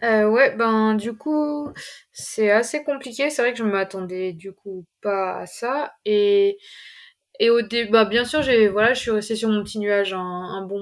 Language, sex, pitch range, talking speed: French, female, 200-245 Hz, 210 wpm